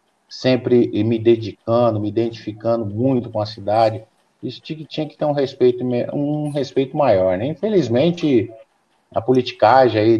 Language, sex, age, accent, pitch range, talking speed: Portuguese, male, 50-69, Brazilian, 105-120 Hz, 135 wpm